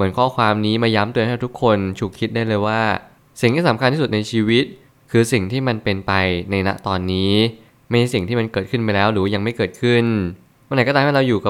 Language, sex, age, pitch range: Thai, male, 20-39, 100-120 Hz